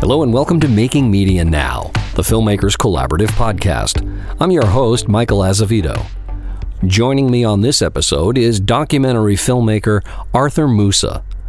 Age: 50-69